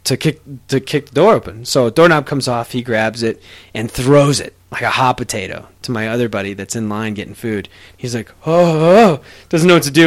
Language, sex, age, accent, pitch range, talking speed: English, male, 20-39, American, 115-165 Hz, 240 wpm